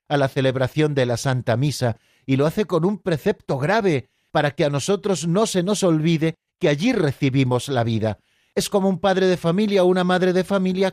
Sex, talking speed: male, 210 wpm